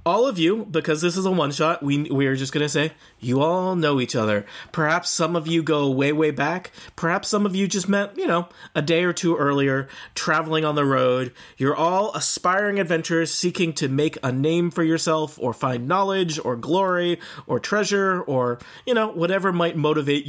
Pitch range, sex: 130-170 Hz, male